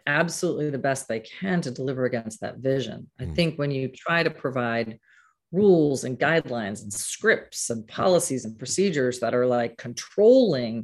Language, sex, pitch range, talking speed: English, female, 125-170 Hz, 165 wpm